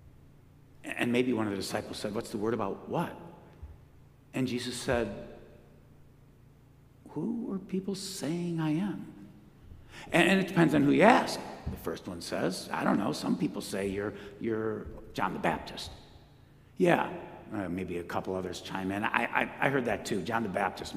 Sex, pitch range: male, 95-130 Hz